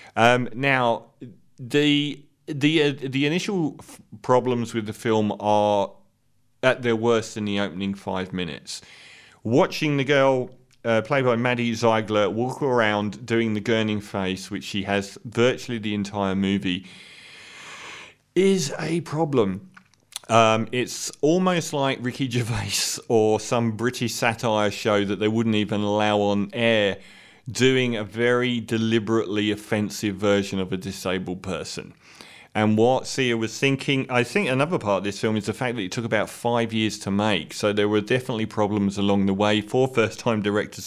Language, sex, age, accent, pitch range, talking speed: English, male, 40-59, British, 105-125 Hz, 155 wpm